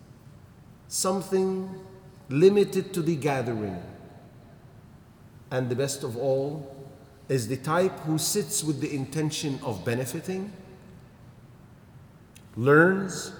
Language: English